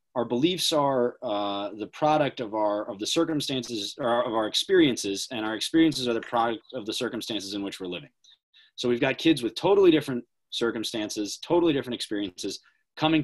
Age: 30-49